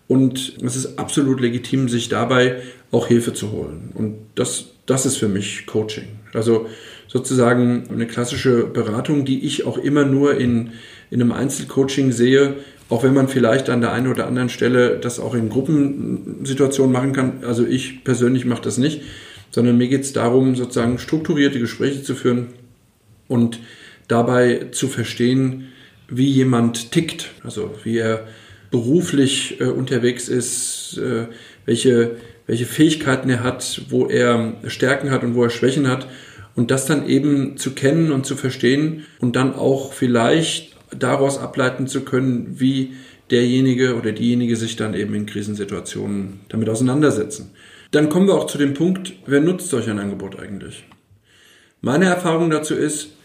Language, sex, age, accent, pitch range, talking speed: German, male, 40-59, German, 115-135 Hz, 155 wpm